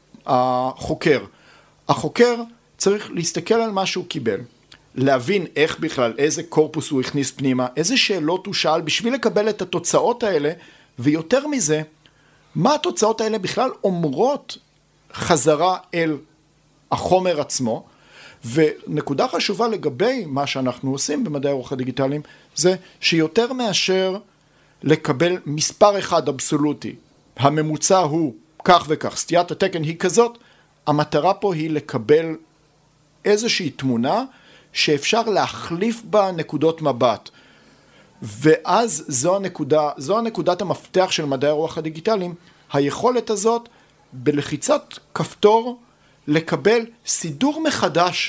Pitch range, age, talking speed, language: 150-195 Hz, 50-69, 110 wpm, Hebrew